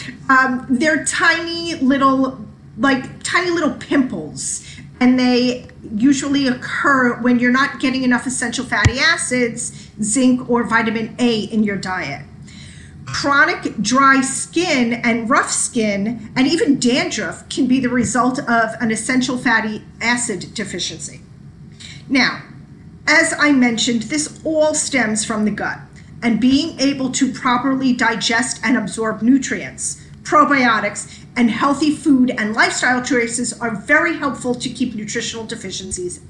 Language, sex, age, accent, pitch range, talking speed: English, female, 40-59, American, 235-285 Hz, 130 wpm